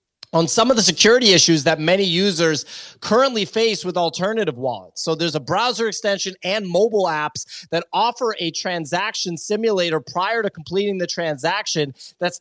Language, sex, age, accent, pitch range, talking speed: English, male, 30-49, American, 150-195 Hz, 160 wpm